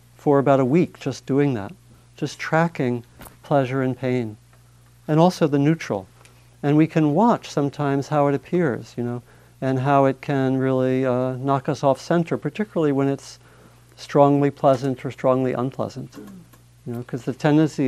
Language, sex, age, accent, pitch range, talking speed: English, male, 50-69, American, 120-140 Hz, 165 wpm